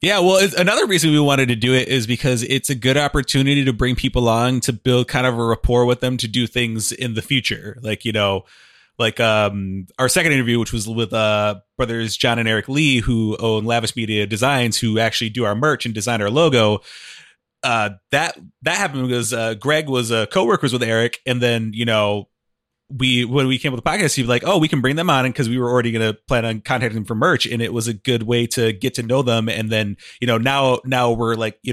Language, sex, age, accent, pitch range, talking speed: English, male, 30-49, American, 115-130 Hz, 240 wpm